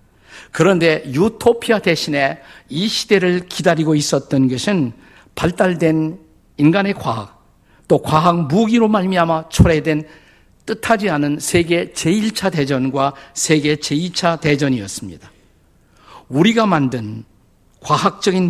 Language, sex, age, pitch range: Korean, male, 50-69, 135-190 Hz